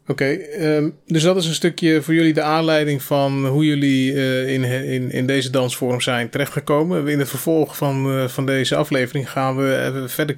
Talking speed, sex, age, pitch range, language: 200 wpm, male, 20-39, 125-150 Hz, Dutch